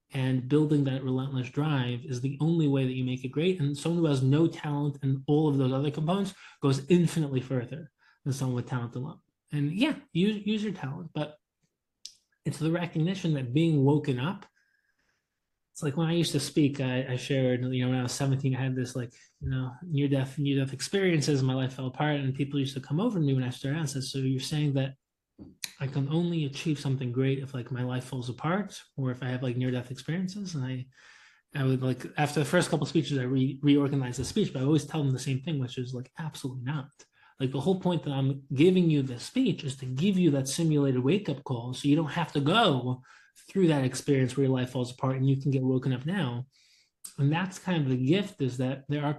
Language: English